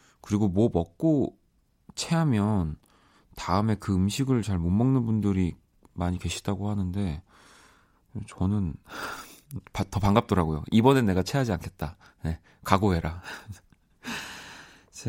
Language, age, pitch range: Korean, 40-59, 90-115 Hz